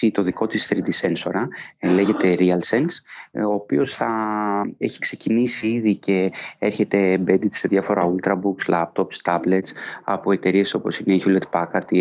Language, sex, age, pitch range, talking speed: Greek, male, 20-39, 95-115 Hz, 145 wpm